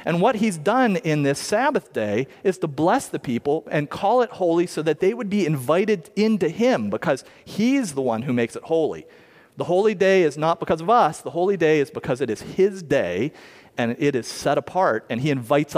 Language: English